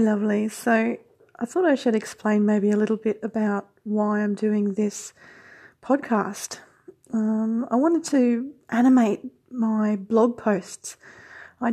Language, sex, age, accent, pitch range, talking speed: English, female, 30-49, Australian, 205-230 Hz, 135 wpm